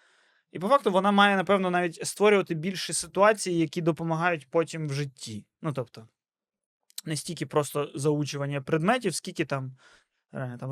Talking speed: 140 wpm